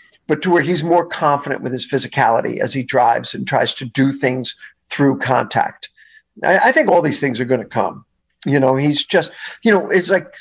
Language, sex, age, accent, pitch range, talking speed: English, male, 50-69, American, 140-180 Hz, 215 wpm